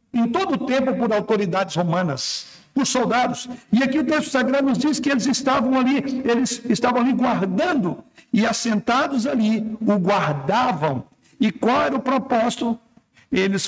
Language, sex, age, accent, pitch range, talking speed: Portuguese, male, 60-79, Brazilian, 190-235 Hz, 155 wpm